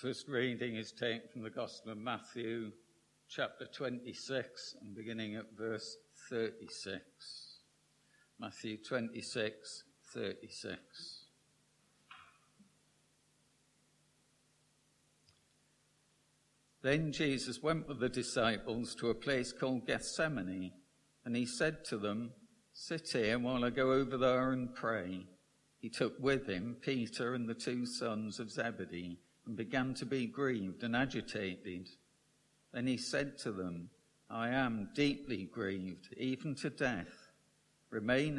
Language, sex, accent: English, male, British